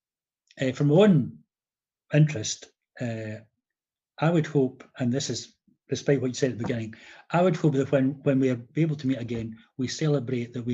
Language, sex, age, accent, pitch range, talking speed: English, male, 40-59, British, 115-160 Hz, 190 wpm